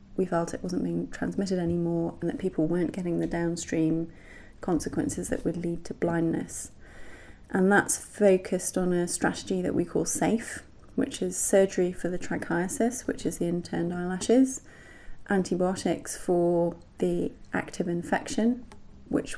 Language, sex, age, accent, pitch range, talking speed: English, female, 30-49, British, 160-190 Hz, 145 wpm